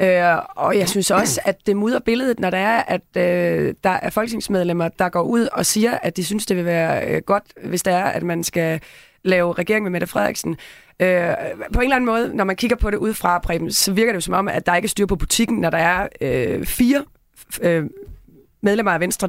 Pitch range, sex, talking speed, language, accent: 170-215 Hz, female, 235 wpm, Danish, native